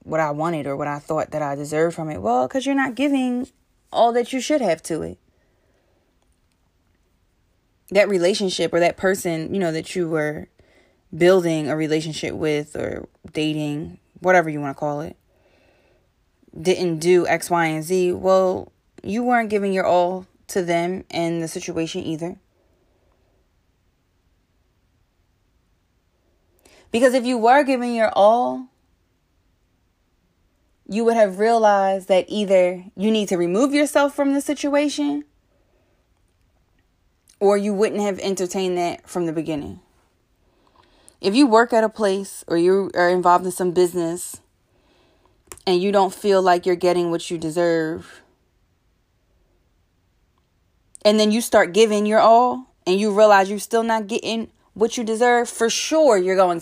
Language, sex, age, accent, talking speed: English, female, 20-39, American, 145 wpm